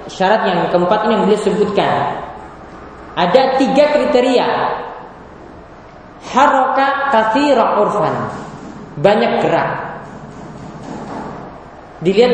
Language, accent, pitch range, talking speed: Indonesian, native, 195-265 Hz, 80 wpm